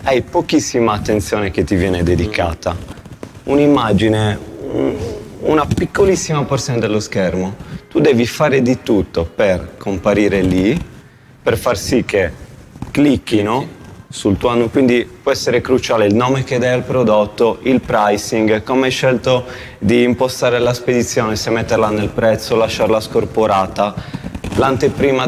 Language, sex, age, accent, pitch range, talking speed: Italian, male, 30-49, native, 95-130 Hz, 130 wpm